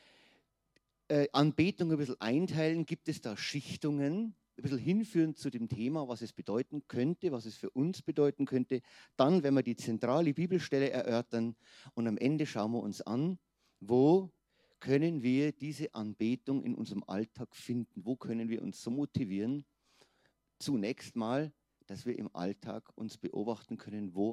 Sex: male